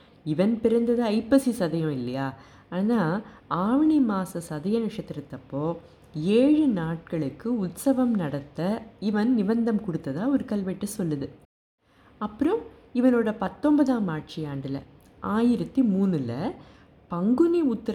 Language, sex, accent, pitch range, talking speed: Tamil, female, native, 160-235 Hz, 95 wpm